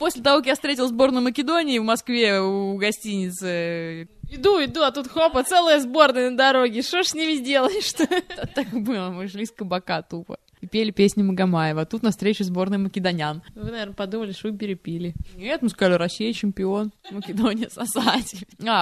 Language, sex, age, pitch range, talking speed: Russian, female, 20-39, 185-240 Hz, 175 wpm